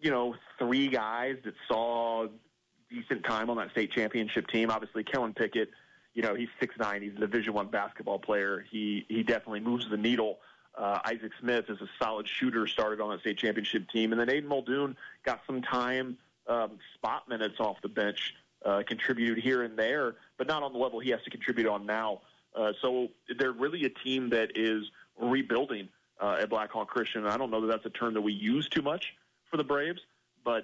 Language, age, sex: English, 30-49, male